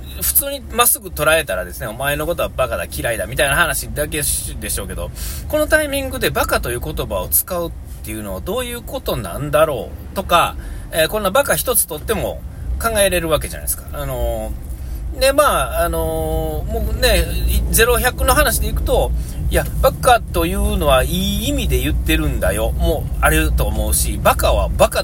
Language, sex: Japanese, male